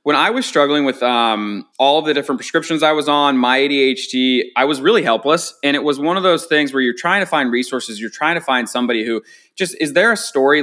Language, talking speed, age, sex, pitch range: English, 245 wpm, 20-39, male, 120-145 Hz